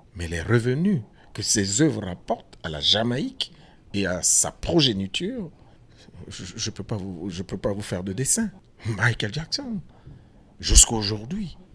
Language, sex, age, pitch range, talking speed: French, male, 60-79, 100-135 Hz, 145 wpm